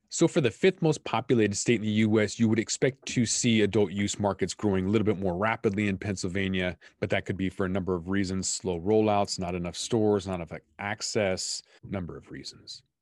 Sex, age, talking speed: male, 30-49, 210 wpm